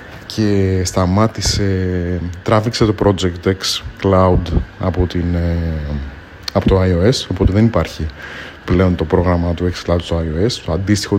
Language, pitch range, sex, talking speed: Greek, 90-110 Hz, male, 135 wpm